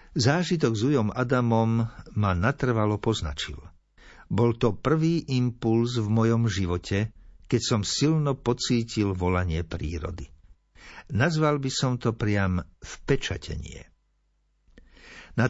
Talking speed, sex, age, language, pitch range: 105 wpm, male, 60-79, Slovak, 95-120 Hz